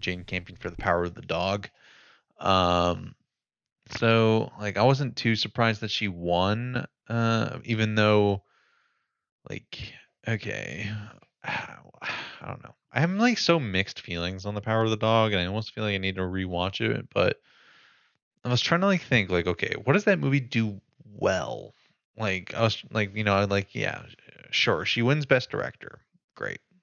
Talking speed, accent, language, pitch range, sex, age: 175 wpm, American, English, 95-120 Hz, male, 20-39